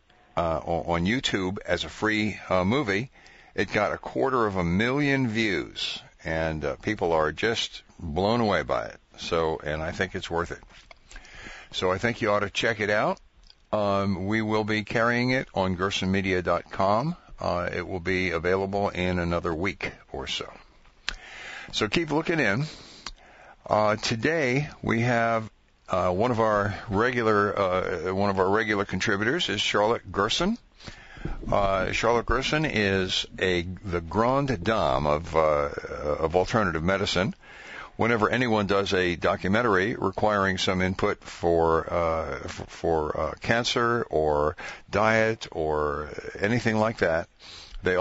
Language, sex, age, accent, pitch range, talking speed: English, male, 50-69, American, 90-115 Hz, 140 wpm